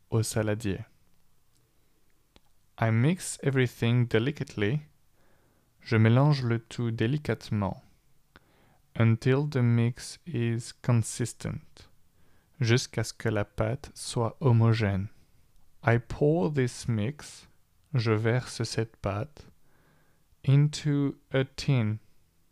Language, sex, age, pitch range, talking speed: French, male, 20-39, 105-130 Hz, 90 wpm